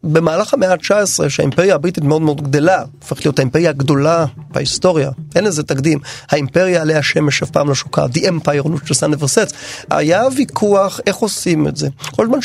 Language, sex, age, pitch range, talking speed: Hebrew, male, 30-49, 150-210 Hz, 170 wpm